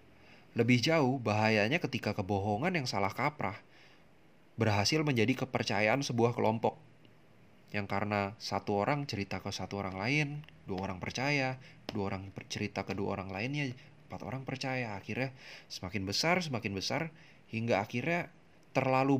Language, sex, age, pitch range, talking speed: Indonesian, male, 20-39, 105-130 Hz, 135 wpm